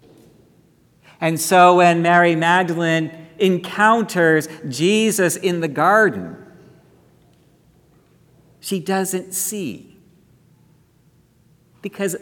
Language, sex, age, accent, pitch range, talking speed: English, male, 50-69, American, 160-190 Hz, 70 wpm